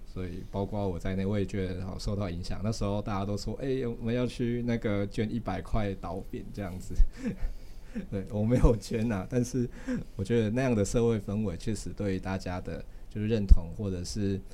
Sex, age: male, 20-39